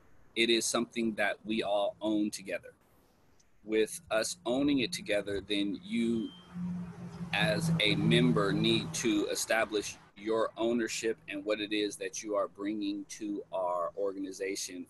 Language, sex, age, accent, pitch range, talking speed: English, male, 30-49, American, 100-125 Hz, 135 wpm